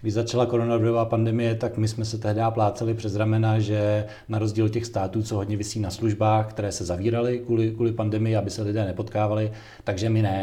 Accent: native